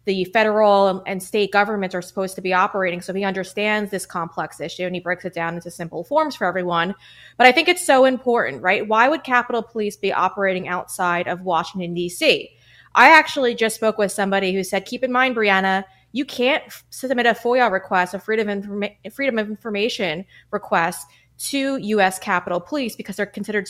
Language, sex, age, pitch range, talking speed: English, female, 20-39, 185-245 Hz, 185 wpm